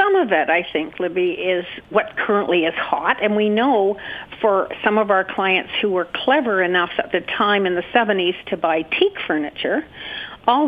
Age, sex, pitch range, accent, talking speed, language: 50-69, female, 185-225 Hz, American, 190 wpm, English